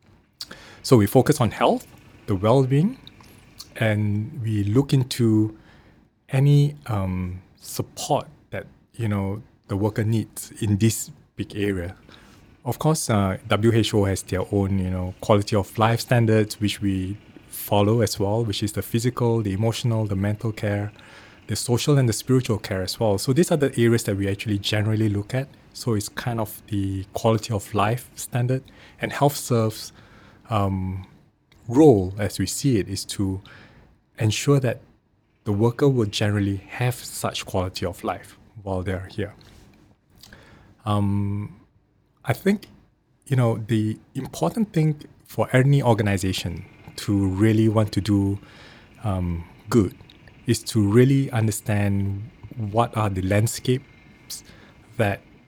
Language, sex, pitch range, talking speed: English, male, 100-120 Hz, 140 wpm